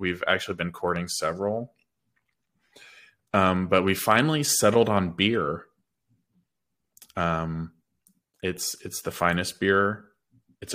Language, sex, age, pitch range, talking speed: English, male, 20-39, 85-100 Hz, 105 wpm